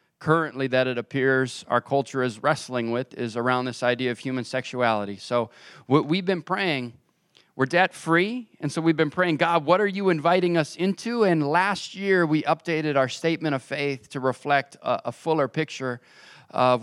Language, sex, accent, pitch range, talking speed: English, male, American, 130-160 Hz, 180 wpm